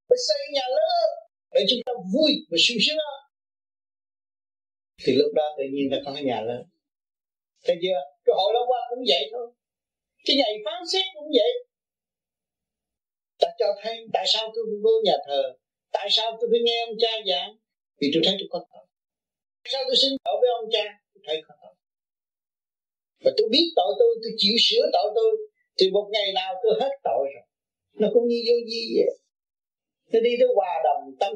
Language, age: Vietnamese, 30-49